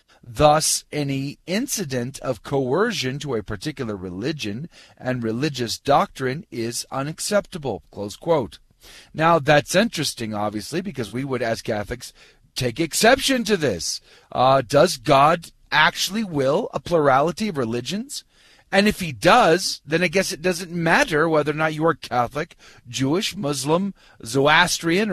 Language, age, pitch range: English, 40-59, 130-175 Hz